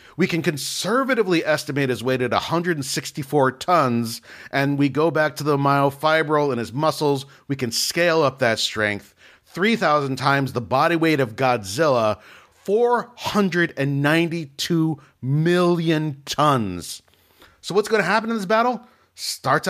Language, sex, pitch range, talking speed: English, male, 130-165 Hz, 135 wpm